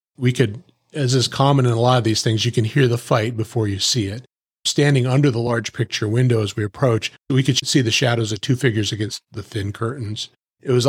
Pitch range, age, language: 100-125 Hz, 40-59, English